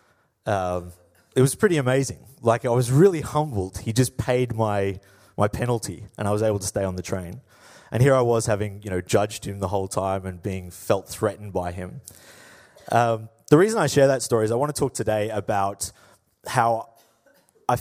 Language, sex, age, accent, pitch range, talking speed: Danish, male, 30-49, Australian, 100-130 Hz, 200 wpm